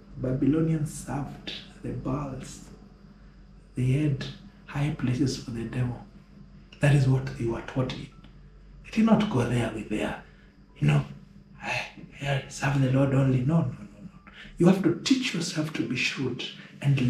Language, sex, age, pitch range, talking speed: English, male, 60-79, 130-180 Hz, 160 wpm